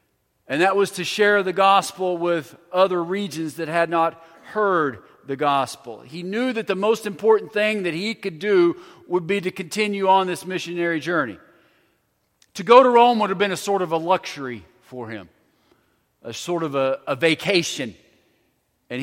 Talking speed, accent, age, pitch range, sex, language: 175 wpm, American, 40-59, 135-195 Hz, male, English